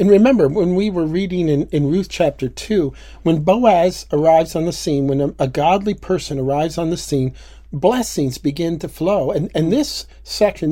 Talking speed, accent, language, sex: 190 wpm, American, English, male